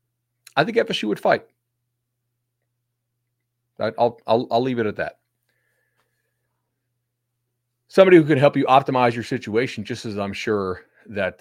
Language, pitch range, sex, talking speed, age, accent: English, 100-125 Hz, male, 130 wpm, 40-59, American